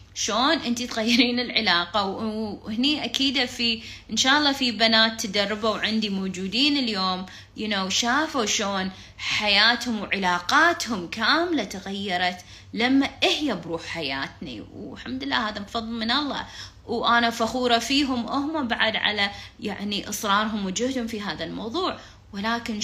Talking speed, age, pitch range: 125 wpm, 20-39, 195-265 Hz